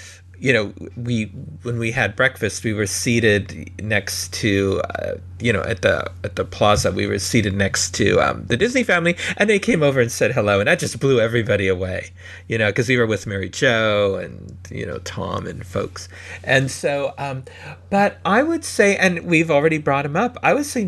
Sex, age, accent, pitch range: male, 40-59, American, 95-140 Hz